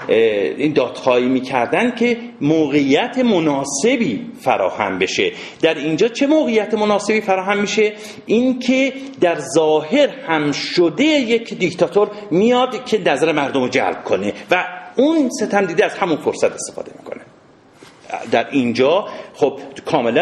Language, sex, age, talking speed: Persian, male, 50-69, 120 wpm